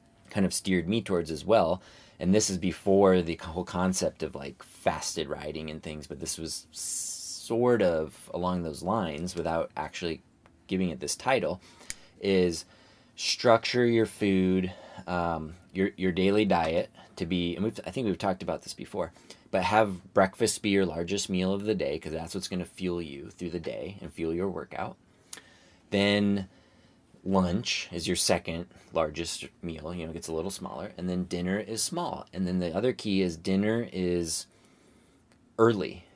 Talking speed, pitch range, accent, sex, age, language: 175 wpm, 90-105 Hz, American, male, 20-39, English